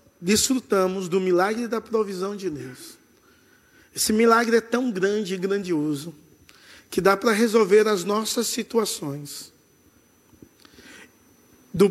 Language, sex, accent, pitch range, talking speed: Portuguese, male, Brazilian, 175-230 Hz, 110 wpm